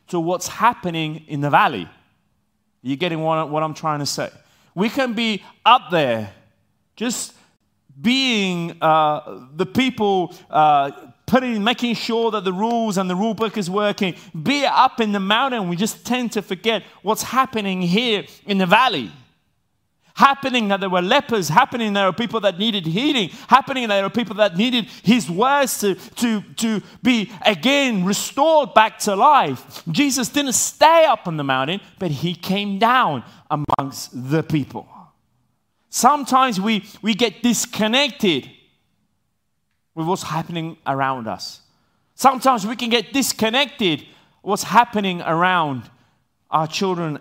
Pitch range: 160-230 Hz